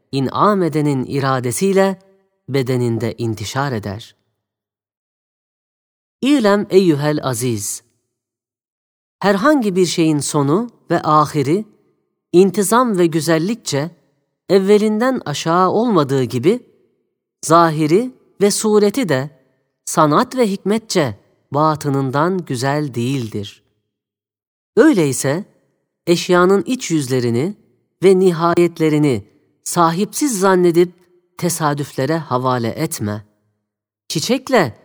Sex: female